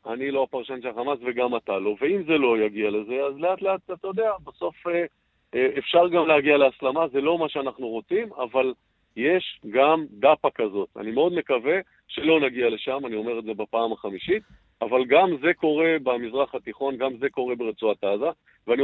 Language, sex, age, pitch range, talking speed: English, male, 50-69, 125-175 Hz, 170 wpm